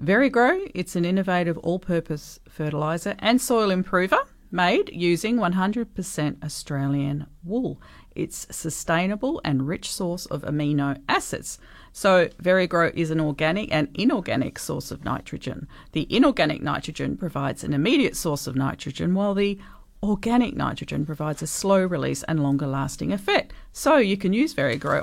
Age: 40-59